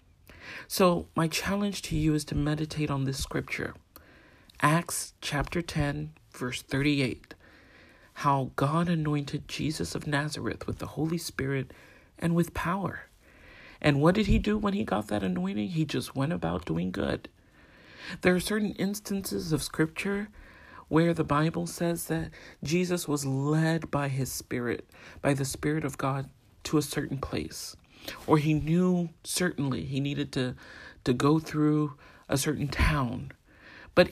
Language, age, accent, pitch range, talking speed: English, 40-59, American, 130-160 Hz, 150 wpm